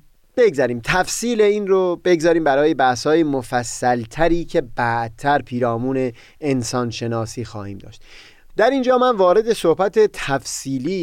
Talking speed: 125 wpm